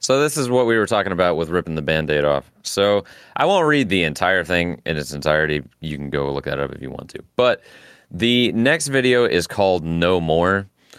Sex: male